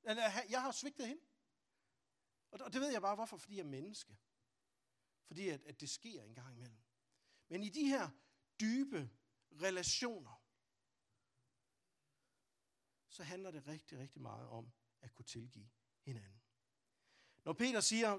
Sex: male